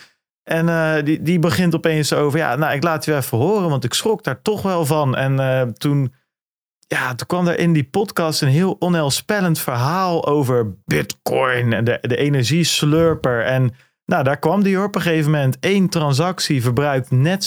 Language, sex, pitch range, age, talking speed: Dutch, male, 125-165 Hz, 40-59, 185 wpm